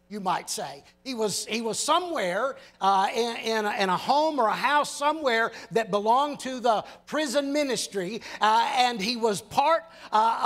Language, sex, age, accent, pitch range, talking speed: English, male, 60-79, American, 180-290 Hz, 170 wpm